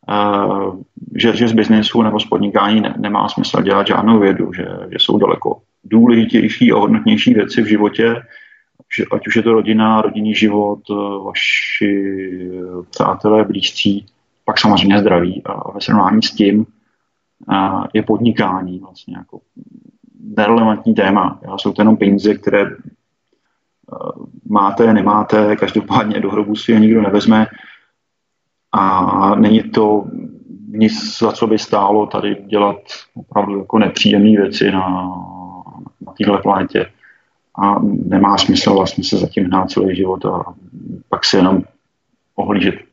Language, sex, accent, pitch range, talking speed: Czech, male, native, 100-115 Hz, 140 wpm